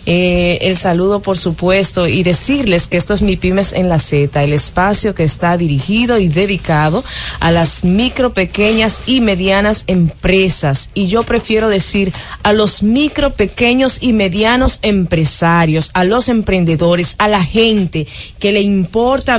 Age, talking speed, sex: 30-49, 150 wpm, female